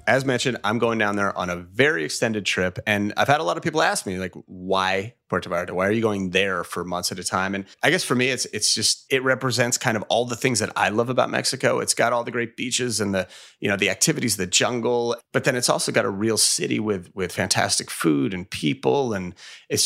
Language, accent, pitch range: English, American, 100-125 Hz